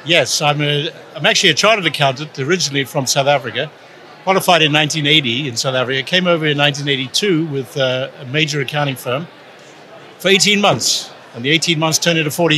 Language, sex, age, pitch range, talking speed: English, male, 60-79, 140-175 Hz, 180 wpm